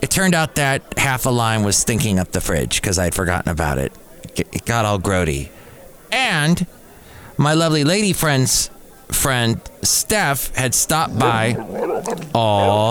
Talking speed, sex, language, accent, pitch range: 155 wpm, male, English, American, 100-130 Hz